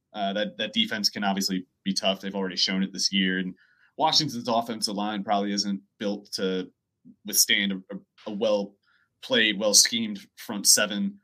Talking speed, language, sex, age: 165 wpm, English, male, 30-49